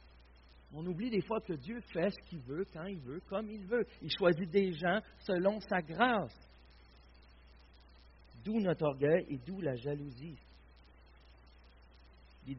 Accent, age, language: French, 60-79, French